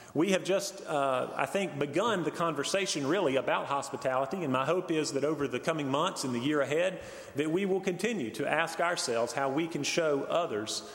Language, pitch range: English, 135-170 Hz